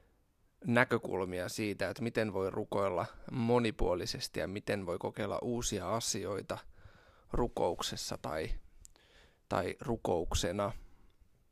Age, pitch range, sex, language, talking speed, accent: 20-39, 95-115 Hz, male, Finnish, 90 wpm, native